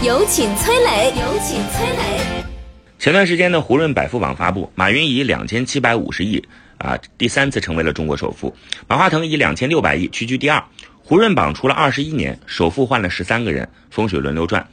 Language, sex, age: Chinese, male, 30-49